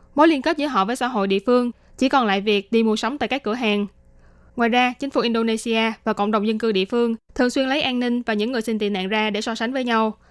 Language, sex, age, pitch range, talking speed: Vietnamese, female, 20-39, 210-250 Hz, 290 wpm